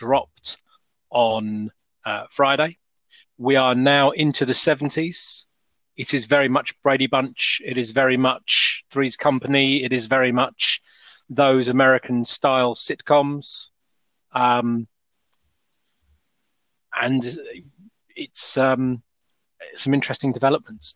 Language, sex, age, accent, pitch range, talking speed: English, male, 30-49, British, 115-140 Hz, 105 wpm